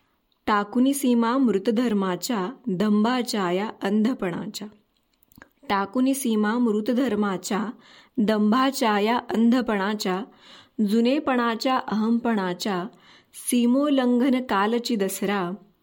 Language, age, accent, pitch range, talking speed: Marathi, 20-39, native, 205-250 Hz, 55 wpm